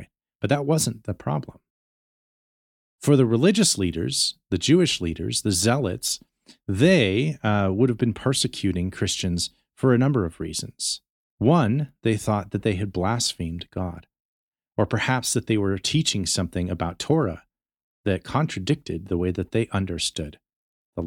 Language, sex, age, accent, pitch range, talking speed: English, male, 30-49, American, 90-130 Hz, 145 wpm